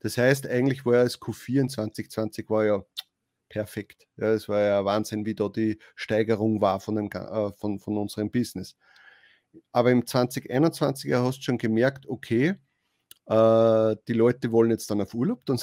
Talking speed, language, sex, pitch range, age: 175 wpm, German, male, 110-130 Hz, 30-49